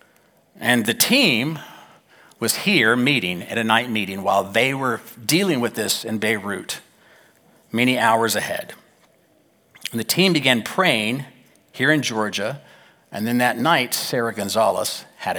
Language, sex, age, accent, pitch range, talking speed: English, male, 50-69, American, 110-145 Hz, 140 wpm